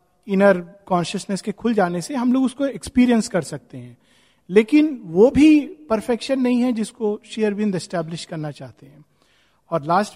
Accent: native